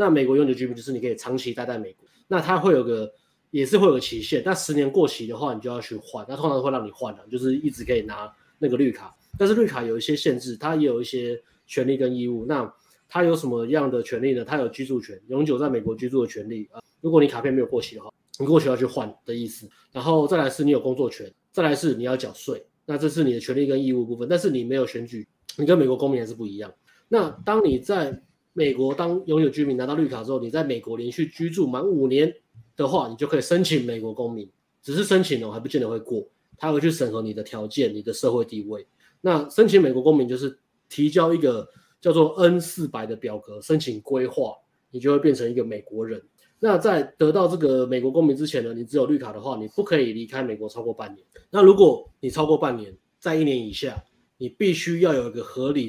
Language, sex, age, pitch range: Chinese, male, 20-39, 115-155 Hz